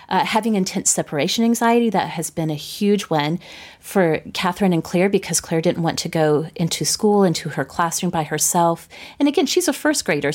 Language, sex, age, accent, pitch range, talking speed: English, female, 30-49, American, 165-215 Hz, 195 wpm